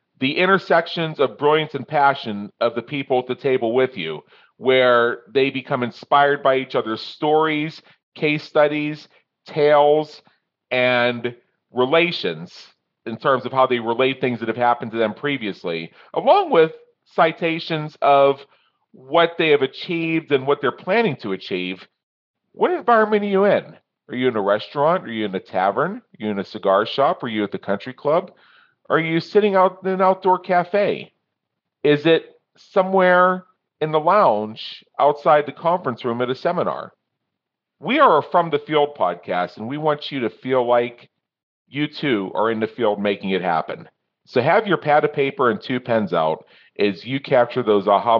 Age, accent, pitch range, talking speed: 40-59, American, 115-160 Hz, 175 wpm